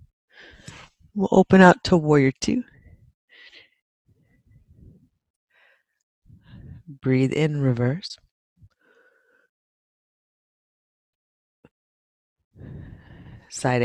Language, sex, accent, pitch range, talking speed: English, female, American, 130-205 Hz, 45 wpm